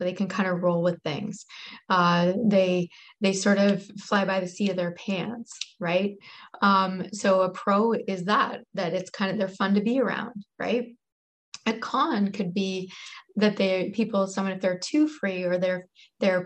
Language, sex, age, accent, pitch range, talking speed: English, female, 20-39, American, 180-205 Hz, 185 wpm